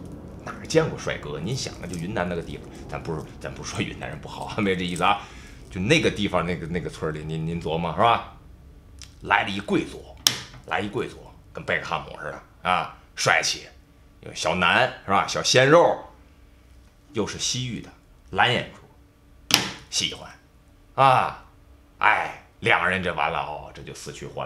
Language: Chinese